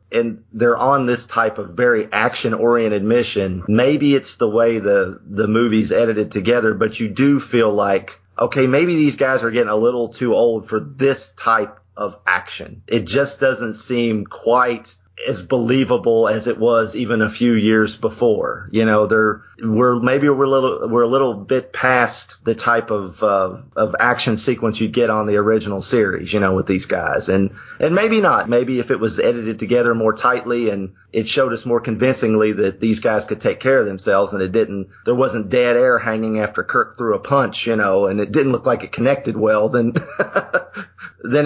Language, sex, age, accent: English, male, 30-49, American